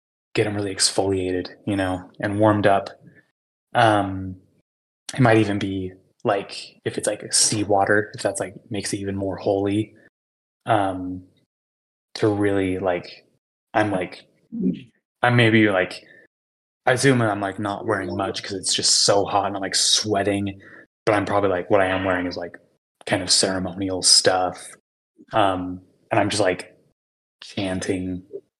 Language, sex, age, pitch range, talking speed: English, male, 20-39, 95-105 Hz, 155 wpm